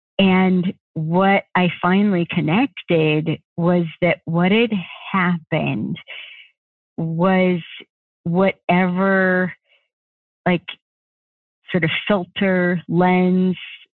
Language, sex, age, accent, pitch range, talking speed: English, female, 40-59, American, 165-185 Hz, 75 wpm